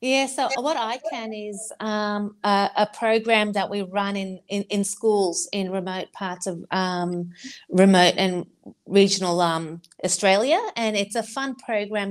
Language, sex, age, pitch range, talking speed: English, female, 40-59, 180-205 Hz, 160 wpm